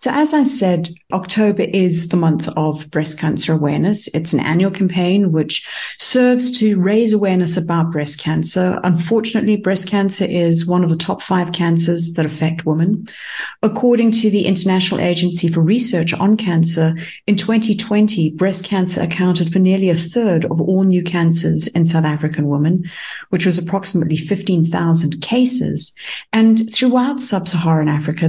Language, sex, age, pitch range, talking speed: English, female, 50-69, 165-210 Hz, 155 wpm